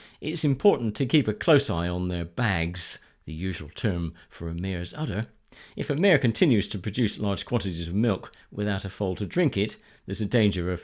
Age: 50-69